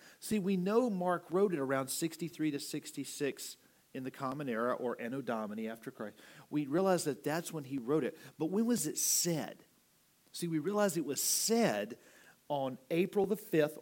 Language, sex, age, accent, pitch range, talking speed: English, male, 40-59, American, 130-160 Hz, 180 wpm